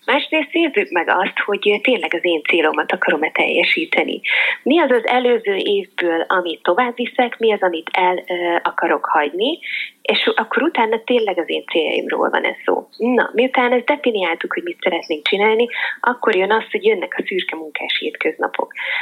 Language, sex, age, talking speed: Hungarian, female, 30-49, 165 wpm